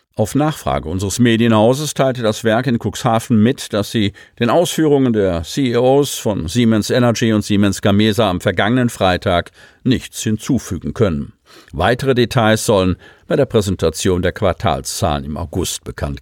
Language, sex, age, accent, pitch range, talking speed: German, male, 50-69, German, 95-125 Hz, 145 wpm